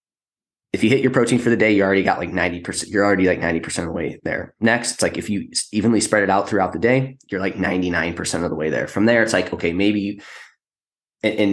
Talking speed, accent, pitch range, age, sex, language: 245 wpm, American, 90-110 Hz, 20-39, male, English